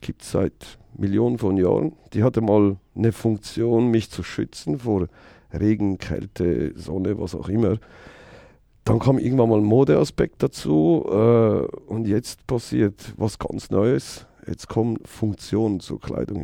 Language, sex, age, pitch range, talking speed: German, male, 50-69, 95-115 Hz, 145 wpm